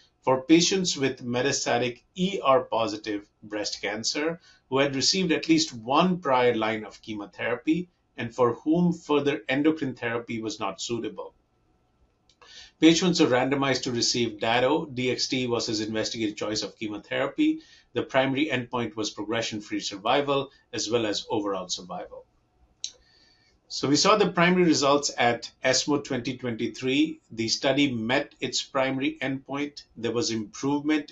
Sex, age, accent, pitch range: male, 50-69, Indian, 110-145 Hz